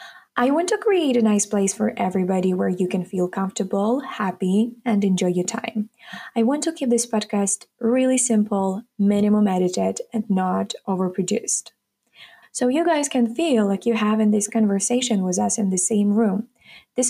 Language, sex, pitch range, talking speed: English, female, 200-240 Hz, 170 wpm